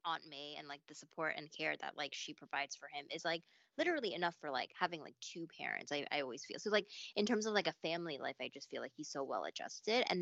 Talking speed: 265 wpm